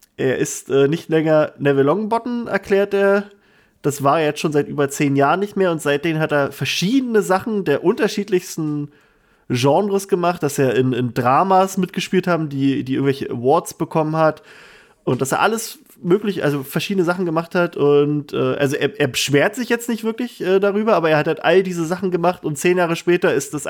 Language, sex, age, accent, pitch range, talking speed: German, male, 20-39, German, 140-180 Hz, 200 wpm